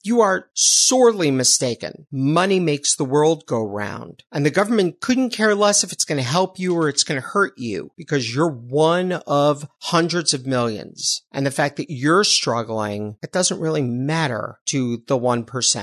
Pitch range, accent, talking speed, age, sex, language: 125-165 Hz, American, 180 wpm, 50-69, male, English